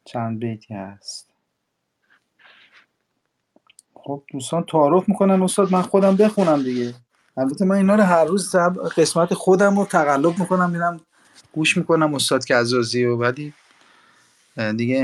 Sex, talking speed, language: male, 125 wpm, Persian